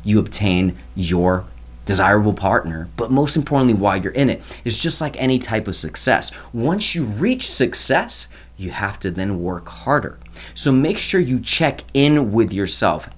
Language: English